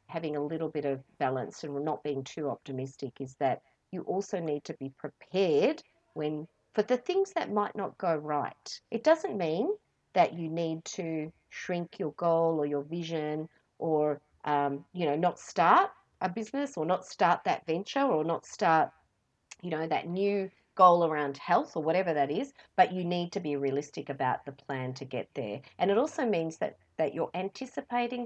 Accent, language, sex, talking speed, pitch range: Australian, English, female, 185 wpm, 140-170 Hz